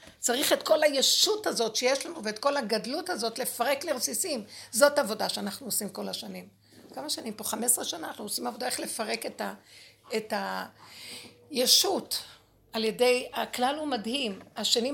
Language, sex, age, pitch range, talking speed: Hebrew, female, 60-79, 210-285 Hz, 155 wpm